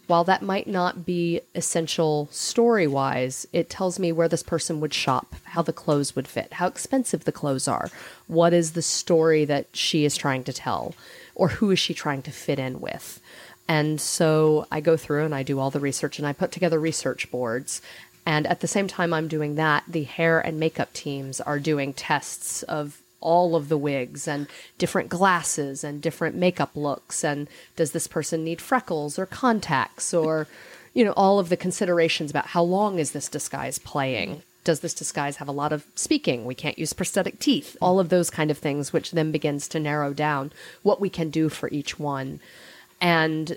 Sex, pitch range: female, 145-175 Hz